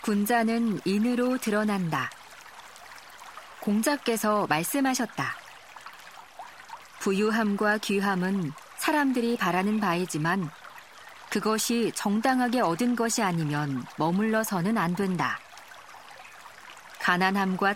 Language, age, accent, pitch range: Korean, 40-59, native, 175-230 Hz